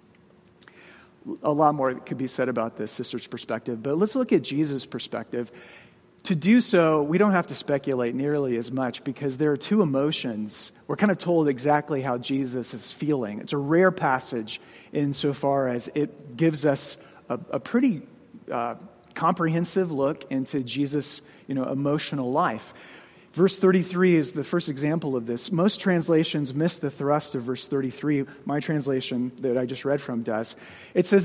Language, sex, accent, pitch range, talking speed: English, male, American, 135-185 Hz, 170 wpm